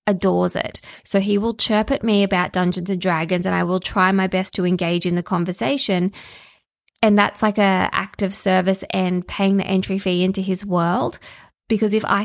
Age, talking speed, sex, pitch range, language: 20-39, 200 wpm, female, 185-215 Hz, English